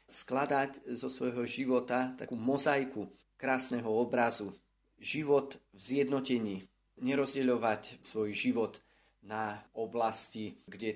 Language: Slovak